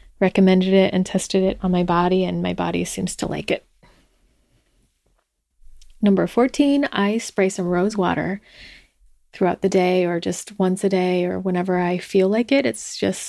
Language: English